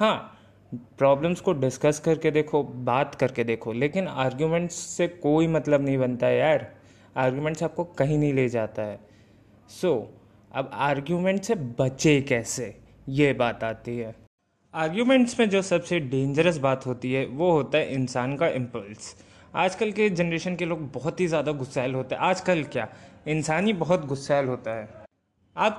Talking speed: 155 wpm